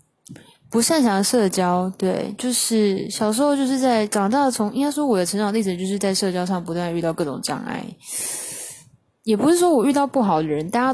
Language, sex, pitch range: Chinese, female, 180-240 Hz